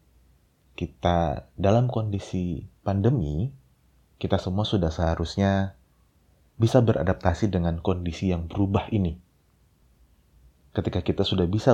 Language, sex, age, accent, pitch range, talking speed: Indonesian, male, 30-49, native, 75-100 Hz, 95 wpm